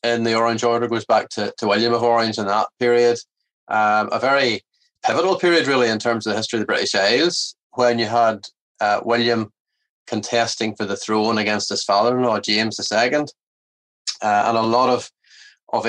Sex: male